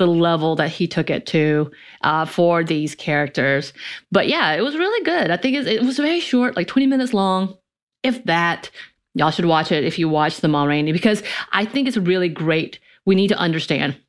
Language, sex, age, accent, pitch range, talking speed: English, female, 30-49, American, 155-200 Hz, 210 wpm